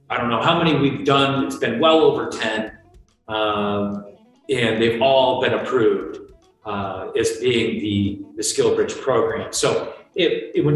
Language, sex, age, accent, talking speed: English, male, 40-59, American, 155 wpm